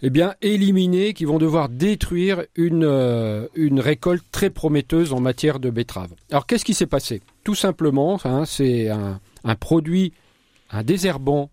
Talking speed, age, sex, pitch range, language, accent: 160 wpm, 40-59, male, 130-170 Hz, French, French